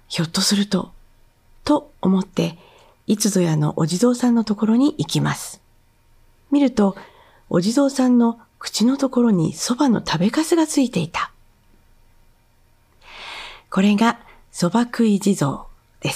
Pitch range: 175-240 Hz